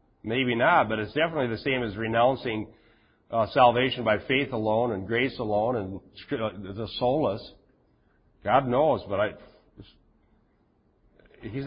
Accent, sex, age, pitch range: American, male, 50-69, 105-140 Hz